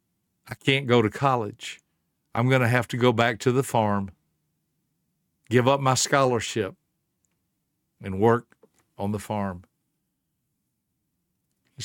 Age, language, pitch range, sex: 60-79, English, 110-140 Hz, male